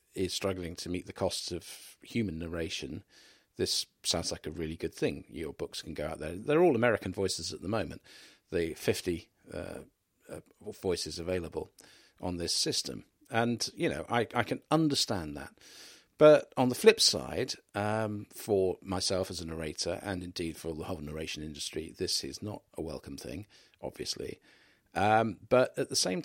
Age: 50-69